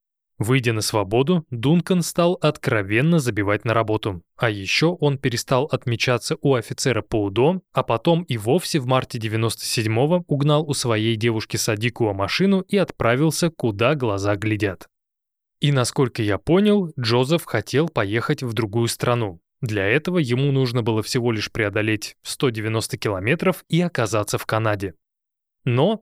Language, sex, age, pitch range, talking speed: Russian, male, 20-39, 110-145 Hz, 145 wpm